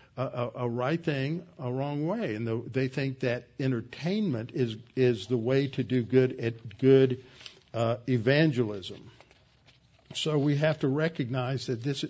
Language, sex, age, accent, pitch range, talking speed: English, male, 50-69, American, 120-140 Hz, 160 wpm